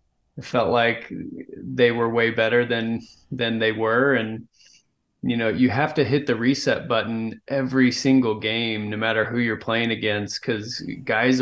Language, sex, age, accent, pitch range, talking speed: English, male, 20-39, American, 115-135 Hz, 170 wpm